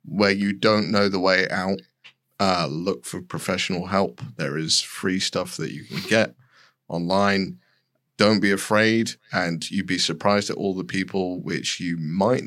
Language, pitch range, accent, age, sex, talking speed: English, 95-115 Hz, British, 30-49, male, 170 wpm